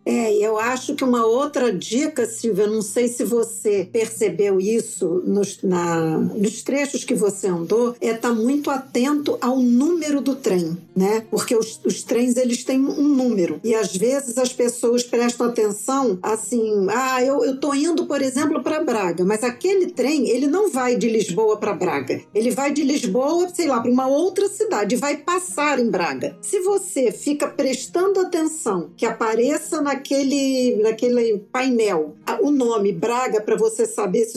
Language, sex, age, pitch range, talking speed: Portuguese, female, 50-69, 220-280 Hz, 170 wpm